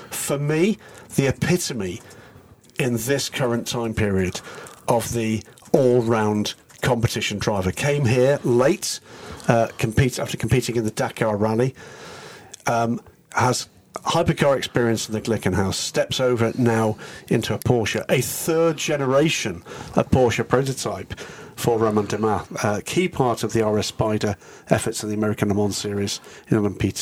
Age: 50-69